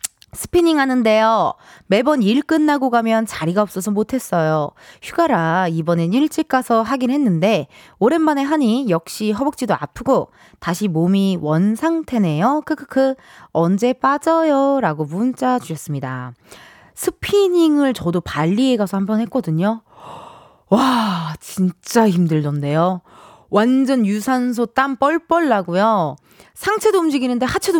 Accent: native